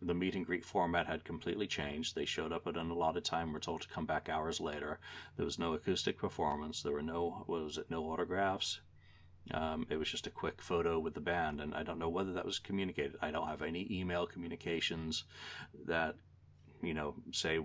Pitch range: 80-90 Hz